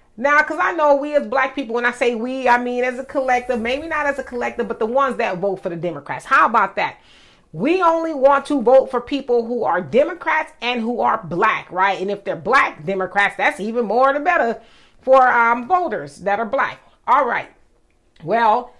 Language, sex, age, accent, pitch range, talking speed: English, female, 30-49, American, 220-280 Hz, 215 wpm